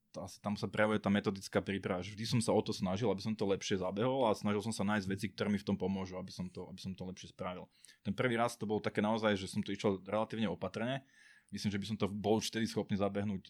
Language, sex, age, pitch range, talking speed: Slovak, male, 20-39, 95-105 Hz, 260 wpm